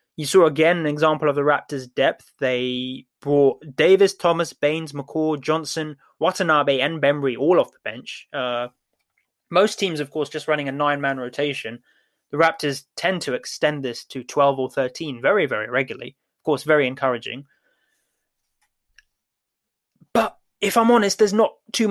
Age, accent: 20-39, British